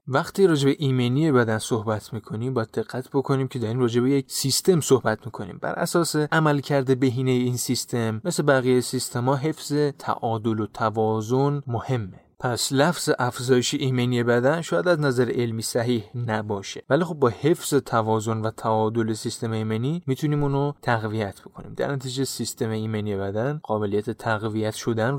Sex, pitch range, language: male, 115-140 Hz, Persian